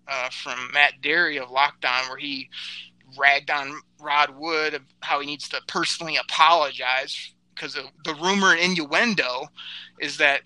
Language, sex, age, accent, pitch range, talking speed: English, male, 30-49, American, 140-175 Hz, 145 wpm